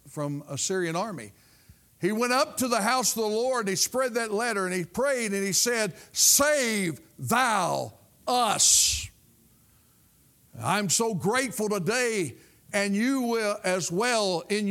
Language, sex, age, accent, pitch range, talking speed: English, male, 50-69, American, 160-240 Hz, 150 wpm